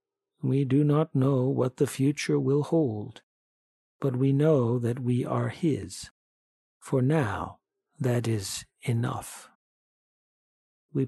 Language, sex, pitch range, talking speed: English, male, 125-170 Hz, 120 wpm